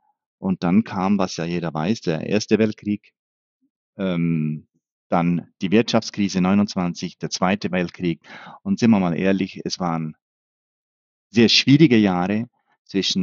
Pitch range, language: 85-115 Hz, German